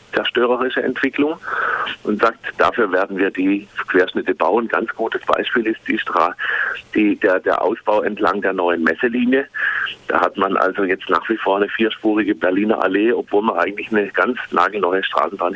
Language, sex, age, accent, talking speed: German, male, 40-59, German, 170 wpm